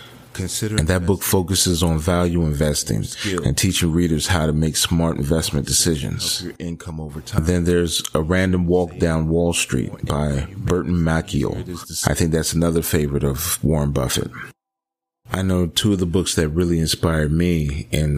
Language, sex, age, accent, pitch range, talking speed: English, male, 30-49, American, 80-95 Hz, 155 wpm